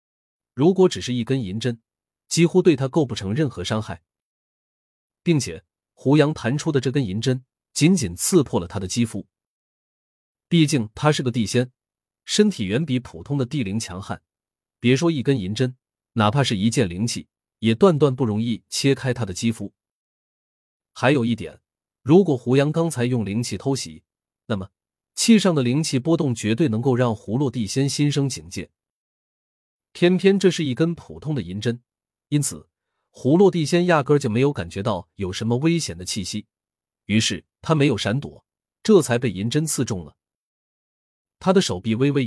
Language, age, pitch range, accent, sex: Chinese, 30-49, 105-150 Hz, native, male